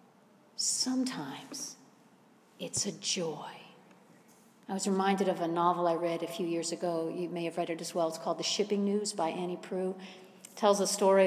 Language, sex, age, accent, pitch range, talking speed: English, female, 50-69, American, 180-250 Hz, 180 wpm